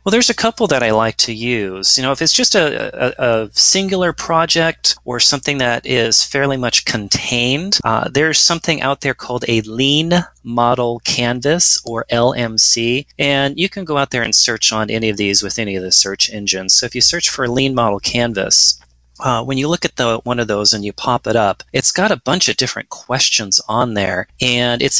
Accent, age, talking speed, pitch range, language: American, 30-49, 210 wpm, 110-140 Hz, English